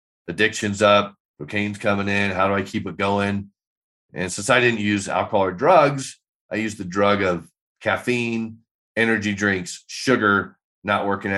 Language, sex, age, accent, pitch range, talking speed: English, male, 40-59, American, 100-120 Hz, 160 wpm